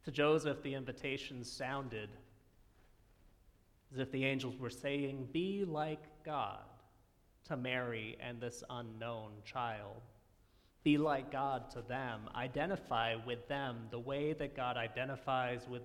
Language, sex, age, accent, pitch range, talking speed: English, male, 30-49, American, 115-140 Hz, 130 wpm